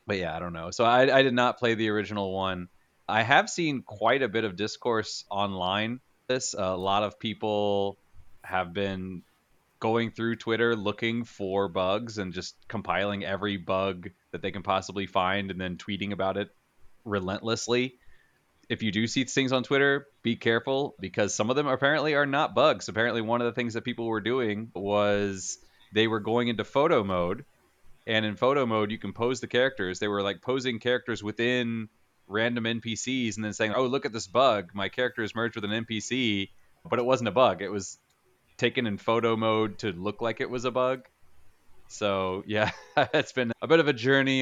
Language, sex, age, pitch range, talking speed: English, male, 30-49, 95-120 Hz, 195 wpm